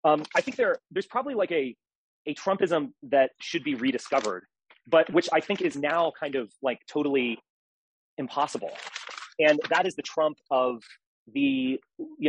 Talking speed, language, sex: 160 wpm, English, male